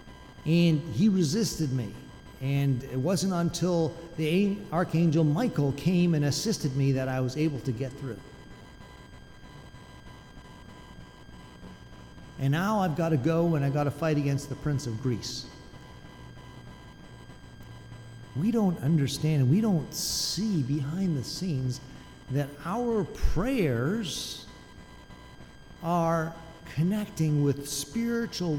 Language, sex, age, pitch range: English, male, 50-69, 130-175 Hz